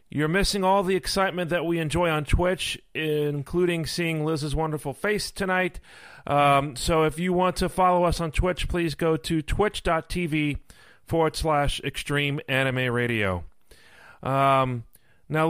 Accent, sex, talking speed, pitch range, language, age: American, male, 140 wpm, 145-180 Hz, English, 40-59